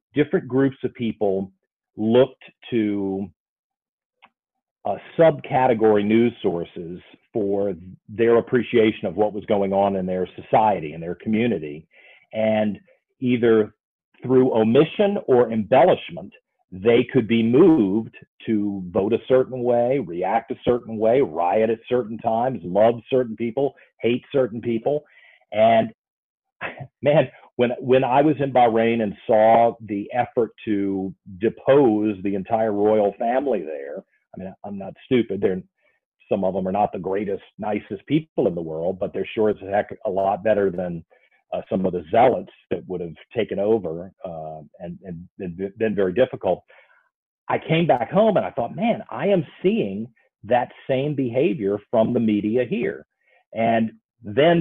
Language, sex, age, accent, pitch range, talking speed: English, male, 40-59, American, 100-130 Hz, 150 wpm